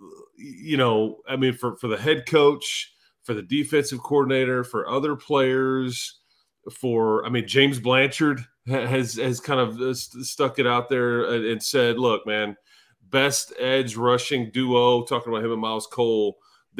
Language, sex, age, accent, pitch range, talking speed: English, male, 30-49, American, 115-140 Hz, 160 wpm